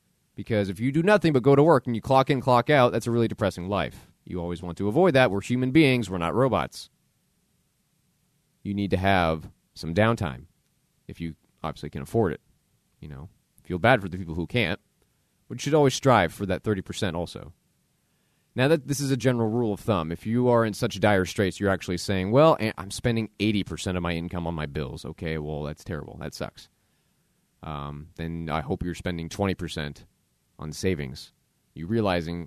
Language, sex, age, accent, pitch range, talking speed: English, male, 30-49, American, 90-115 Hz, 200 wpm